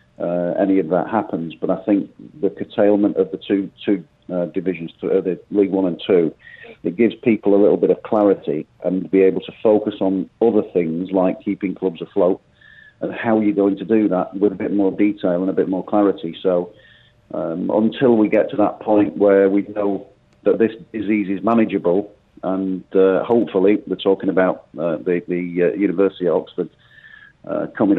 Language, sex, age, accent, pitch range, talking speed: English, male, 40-59, British, 95-105 Hz, 195 wpm